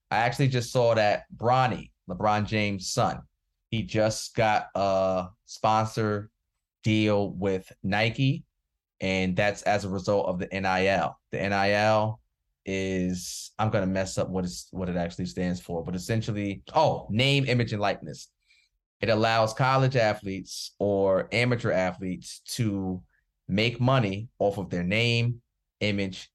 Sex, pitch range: male, 95-120 Hz